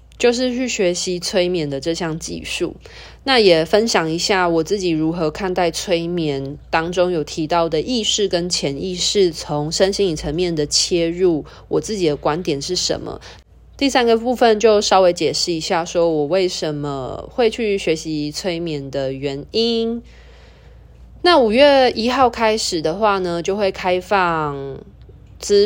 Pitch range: 155-200 Hz